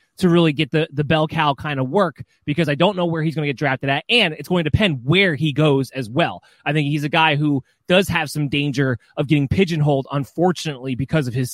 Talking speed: 250 wpm